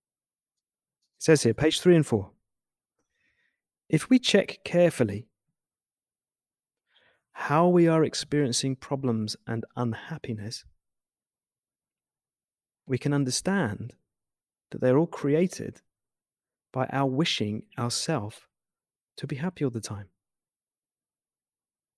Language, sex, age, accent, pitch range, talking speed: English, male, 30-49, British, 125-165 Hz, 95 wpm